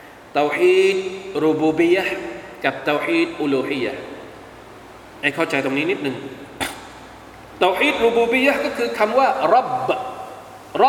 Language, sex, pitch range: Thai, male, 225-365 Hz